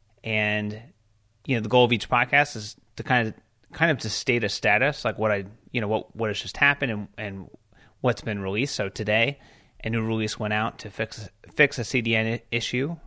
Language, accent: English, American